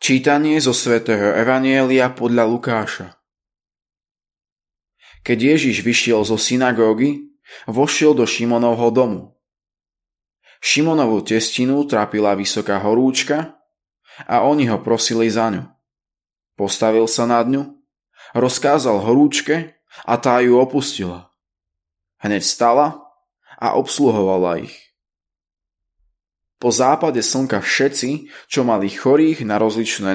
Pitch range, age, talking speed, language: 100-135 Hz, 20-39, 100 wpm, Slovak